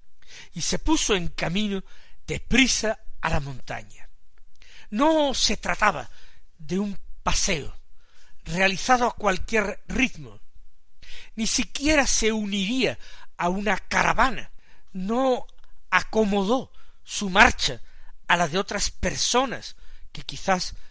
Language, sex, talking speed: Spanish, male, 105 wpm